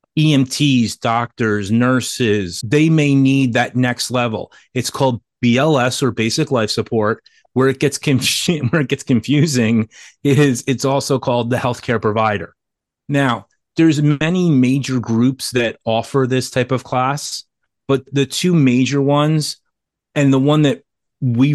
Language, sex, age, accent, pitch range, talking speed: English, male, 30-49, American, 115-140 Hz, 135 wpm